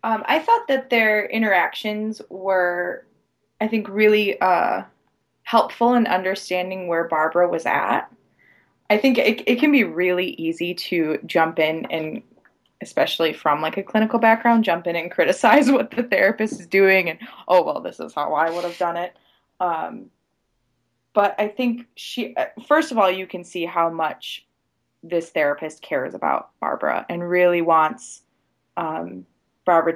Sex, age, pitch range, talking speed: female, 20-39, 160-210 Hz, 160 wpm